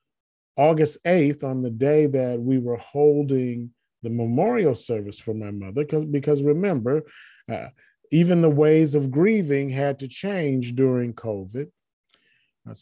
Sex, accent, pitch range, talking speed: male, American, 115-150 Hz, 135 wpm